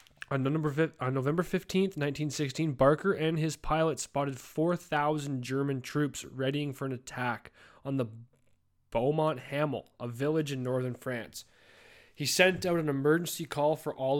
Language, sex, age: English, male, 20-39